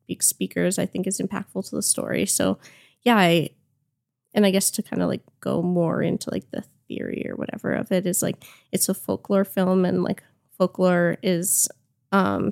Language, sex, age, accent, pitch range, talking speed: English, female, 10-29, American, 175-205 Hz, 185 wpm